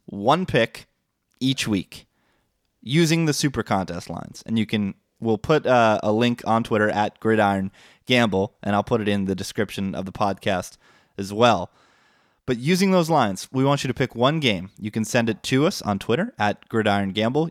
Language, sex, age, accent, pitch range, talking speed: English, male, 20-39, American, 105-140 Hz, 190 wpm